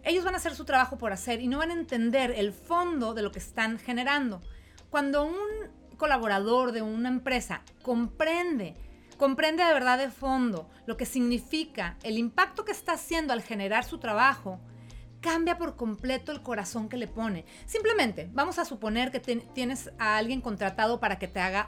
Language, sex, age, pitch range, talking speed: Spanish, female, 40-59, 220-290 Hz, 185 wpm